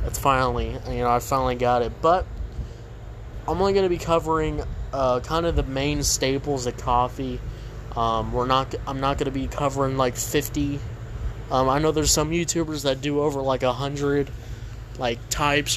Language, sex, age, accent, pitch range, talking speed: English, male, 20-39, American, 115-135 Hz, 185 wpm